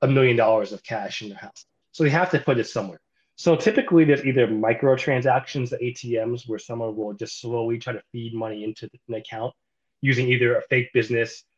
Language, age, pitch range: English, 20-39, 115-140 Hz